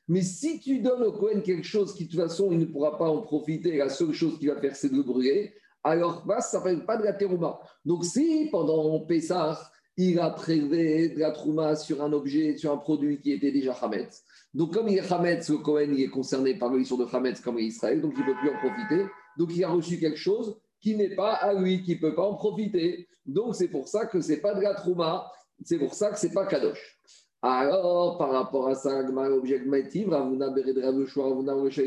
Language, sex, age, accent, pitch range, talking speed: French, male, 50-69, French, 145-200 Hz, 235 wpm